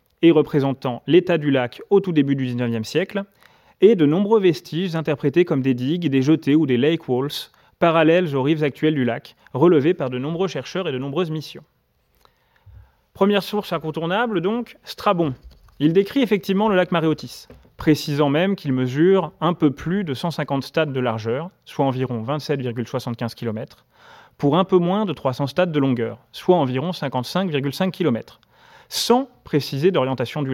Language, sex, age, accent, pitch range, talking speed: French, male, 30-49, French, 130-180 Hz, 165 wpm